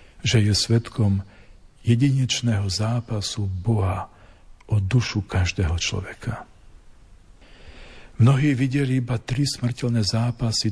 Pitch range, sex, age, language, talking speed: 90-115 Hz, male, 50-69, Slovak, 90 wpm